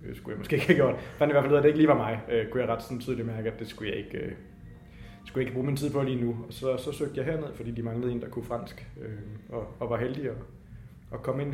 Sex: male